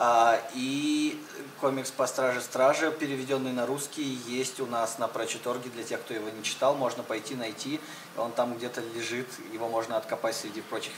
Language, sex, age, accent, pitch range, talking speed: Russian, male, 20-39, native, 115-135 Hz, 165 wpm